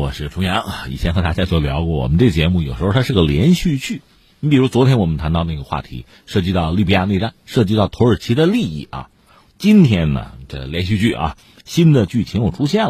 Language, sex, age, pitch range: Chinese, male, 50-69, 90-145 Hz